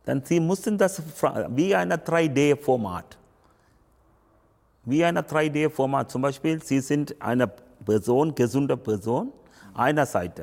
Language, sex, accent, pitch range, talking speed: German, male, Indian, 110-150 Hz, 115 wpm